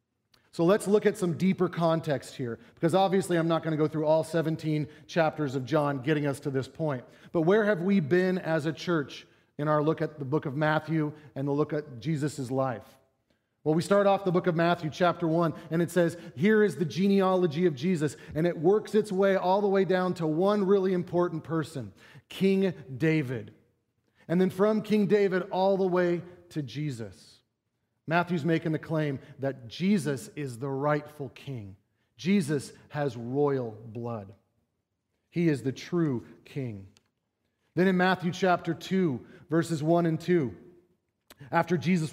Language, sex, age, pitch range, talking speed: English, male, 40-59, 135-175 Hz, 175 wpm